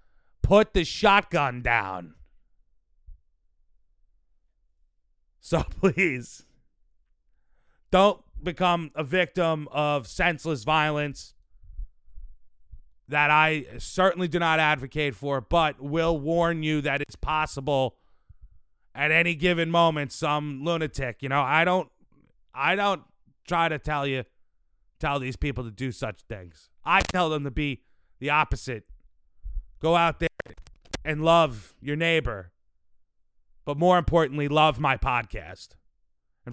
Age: 30-49